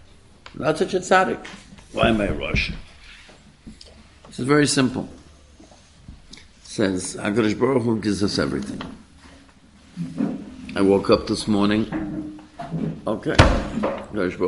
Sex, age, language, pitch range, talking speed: male, 60-79, English, 80-115 Hz, 110 wpm